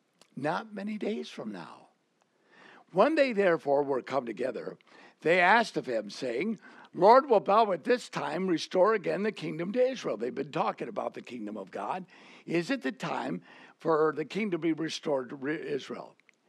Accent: American